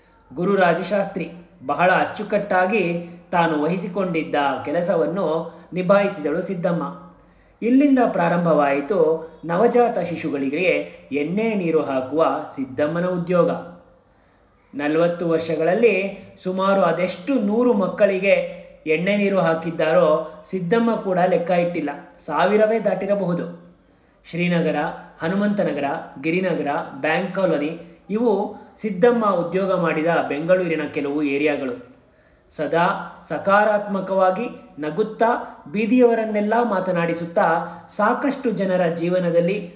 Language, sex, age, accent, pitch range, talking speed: Kannada, male, 30-49, native, 160-205 Hz, 80 wpm